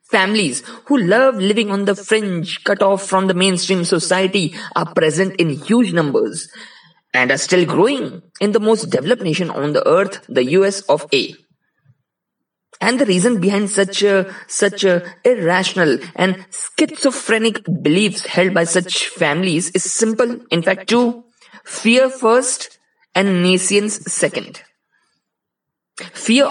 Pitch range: 185-235 Hz